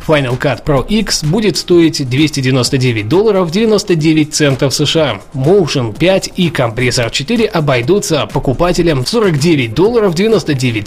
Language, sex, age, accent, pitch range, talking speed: Russian, male, 20-39, native, 130-180 Hz, 115 wpm